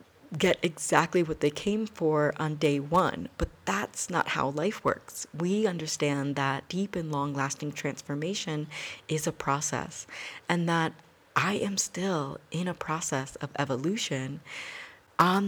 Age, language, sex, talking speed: 40-59, English, female, 145 wpm